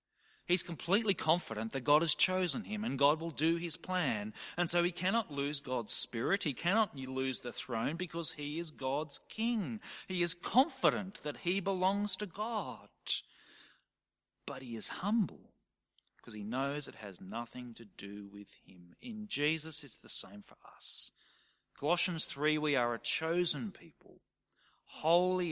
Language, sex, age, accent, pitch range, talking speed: English, male, 40-59, Australian, 140-205 Hz, 160 wpm